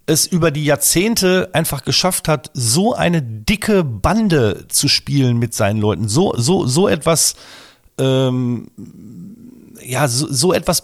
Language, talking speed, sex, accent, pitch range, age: German, 140 wpm, male, German, 135-180 Hz, 40-59